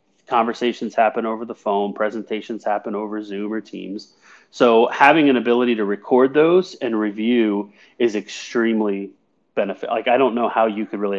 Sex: male